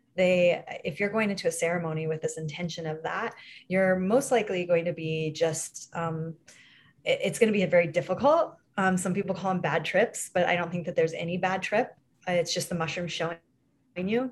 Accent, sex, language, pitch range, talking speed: American, female, English, 165-190 Hz, 205 wpm